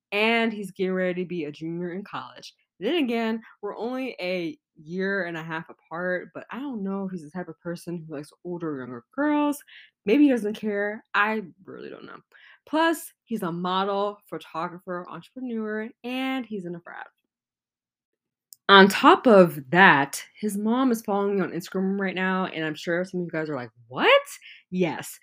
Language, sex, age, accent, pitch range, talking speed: English, female, 20-39, American, 165-225 Hz, 185 wpm